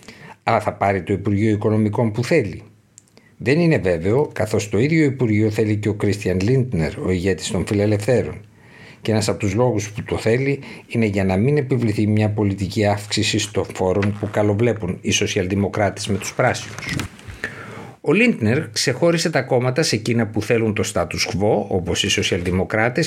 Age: 60-79